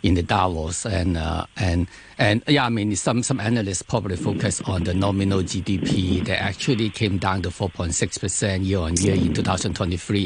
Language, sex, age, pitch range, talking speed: English, male, 50-69, 90-110 Hz, 180 wpm